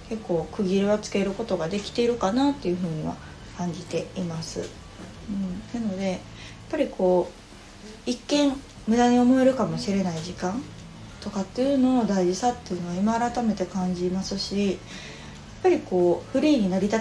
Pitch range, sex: 180-245 Hz, female